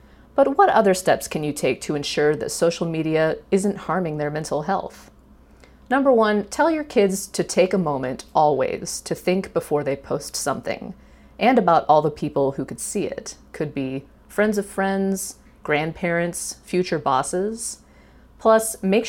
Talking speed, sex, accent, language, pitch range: 165 wpm, female, American, English, 145-210 Hz